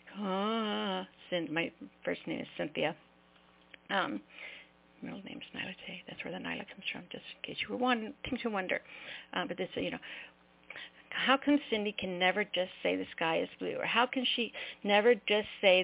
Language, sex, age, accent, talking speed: English, female, 50-69, American, 195 wpm